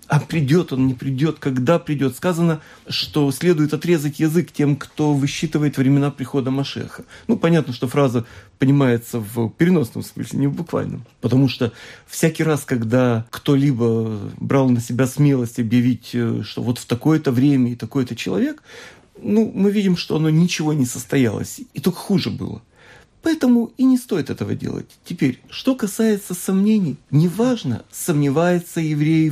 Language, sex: Russian, male